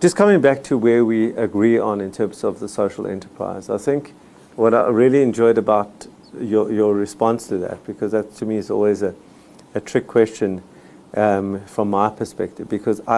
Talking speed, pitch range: 185 wpm, 100-115 Hz